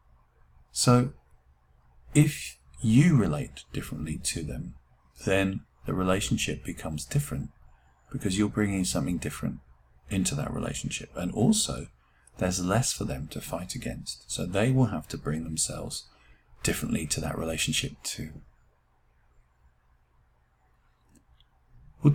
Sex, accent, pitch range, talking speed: male, British, 65-105 Hz, 115 wpm